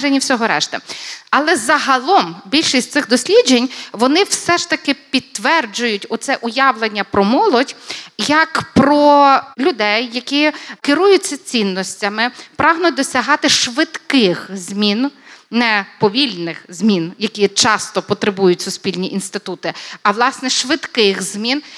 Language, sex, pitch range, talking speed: Ukrainian, female, 220-295 Hz, 100 wpm